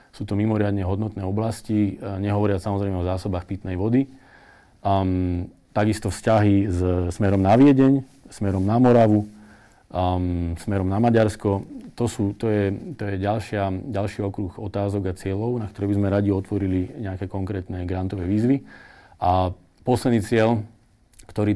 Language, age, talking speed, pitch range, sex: Slovak, 40-59, 140 wpm, 95-110 Hz, male